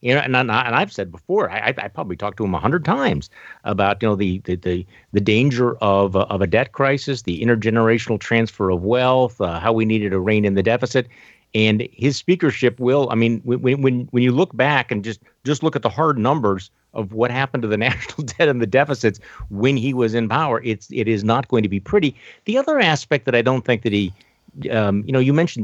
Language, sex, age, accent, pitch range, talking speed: English, male, 50-69, American, 105-130 Hz, 240 wpm